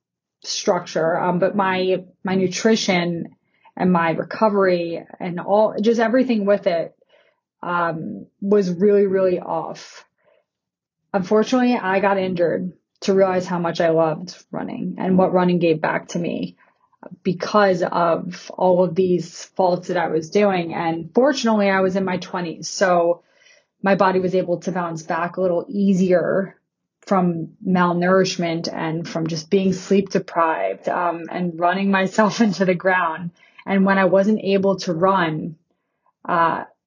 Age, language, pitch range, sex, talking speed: 20-39, English, 175-200 Hz, female, 145 wpm